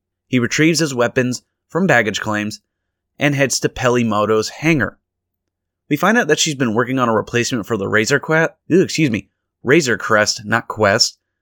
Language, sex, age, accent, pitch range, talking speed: English, male, 20-39, American, 100-135 Hz, 180 wpm